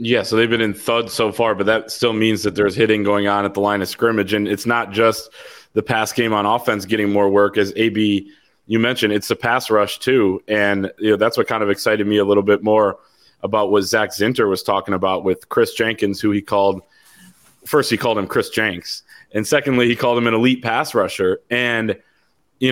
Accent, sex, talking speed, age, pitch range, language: American, male, 230 wpm, 20-39, 105-125 Hz, English